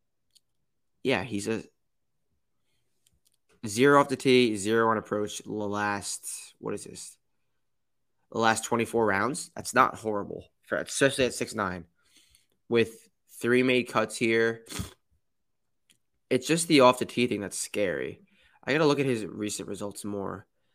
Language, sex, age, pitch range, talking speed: English, male, 20-39, 100-120 Hz, 140 wpm